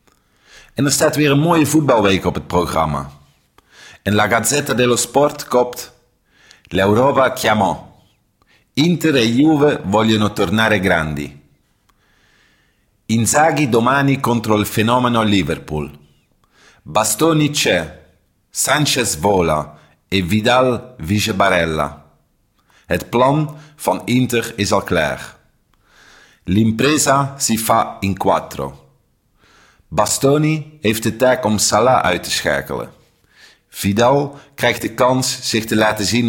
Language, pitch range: English, 95-135 Hz